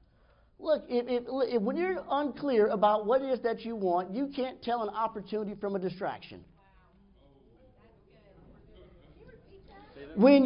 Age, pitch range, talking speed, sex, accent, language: 50-69, 210-265 Hz, 115 wpm, male, American, English